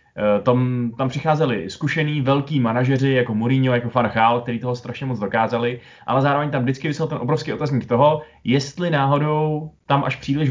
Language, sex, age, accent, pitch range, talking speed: Czech, male, 20-39, native, 120-140 Hz, 175 wpm